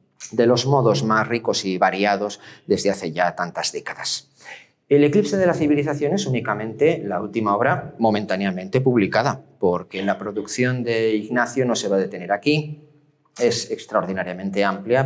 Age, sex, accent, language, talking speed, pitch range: 30-49, male, Spanish, Spanish, 150 wpm, 100-130 Hz